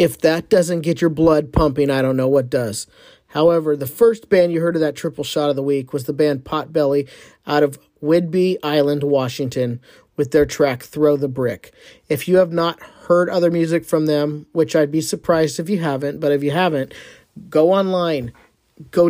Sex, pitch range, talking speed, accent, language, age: male, 145-170 Hz, 200 wpm, American, English, 40-59